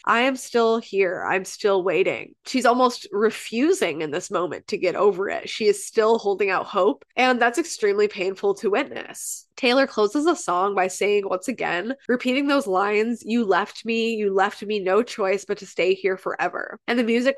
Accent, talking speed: American, 195 wpm